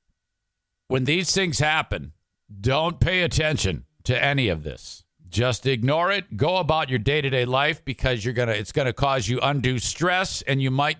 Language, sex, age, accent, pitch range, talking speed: English, male, 50-69, American, 125-180 Hz, 170 wpm